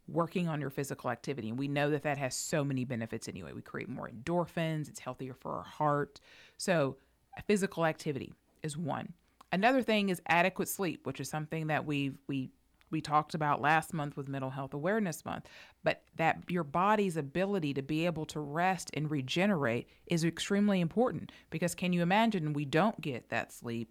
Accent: American